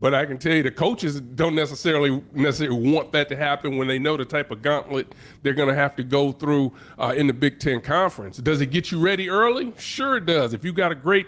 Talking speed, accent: 255 wpm, American